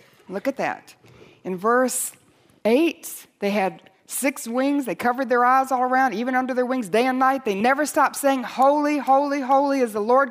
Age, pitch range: 60-79, 220-280 Hz